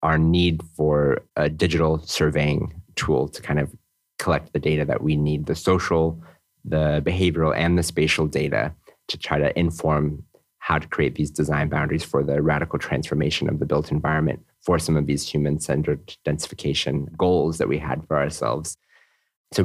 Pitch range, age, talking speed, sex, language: 75-90 Hz, 30-49, 170 wpm, male, Polish